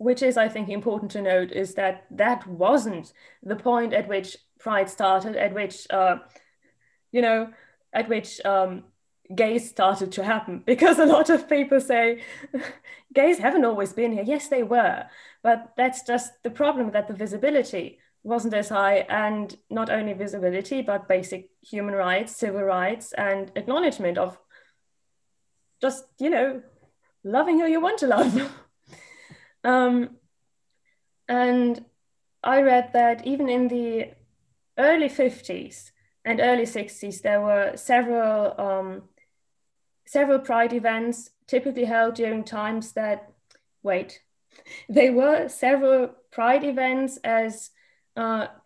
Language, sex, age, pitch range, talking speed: English, female, 20-39, 210-265 Hz, 135 wpm